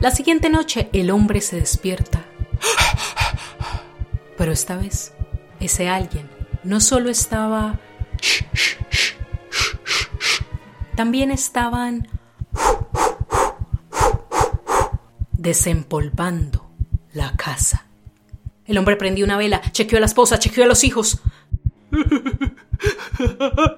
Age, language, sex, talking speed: 30-49, English, female, 85 wpm